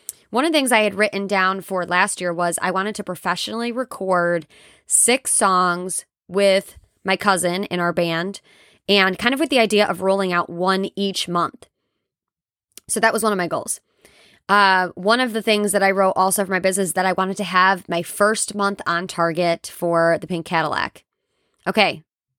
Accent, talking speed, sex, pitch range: American, 190 wpm, female, 180-210 Hz